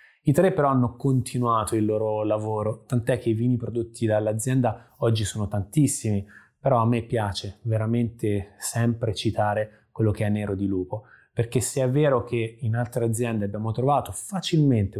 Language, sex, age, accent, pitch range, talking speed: Italian, male, 20-39, native, 105-125 Hz, 165 wpm